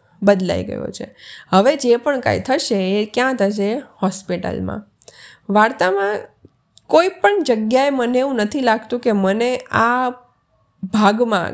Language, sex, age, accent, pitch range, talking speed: Gujarati, female, 20-39, native, 200-255 Hz, 125 wpm